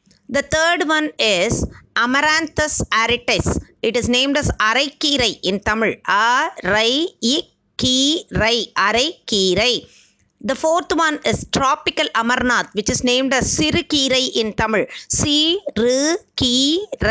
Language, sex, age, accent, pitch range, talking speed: Tamil, female, 30-49, native, 235-290 Hz, 150 wpm